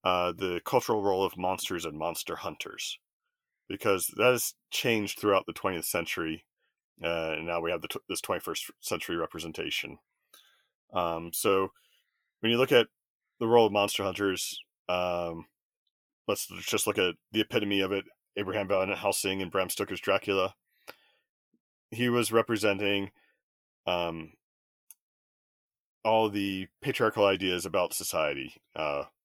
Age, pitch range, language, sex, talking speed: 30-49, 90-110 Hz, English, male, 135 wpm